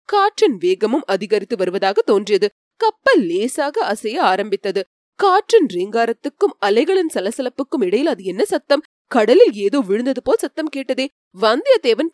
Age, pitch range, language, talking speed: 20-39, 220-365 Hz, Tamil, 120 wpm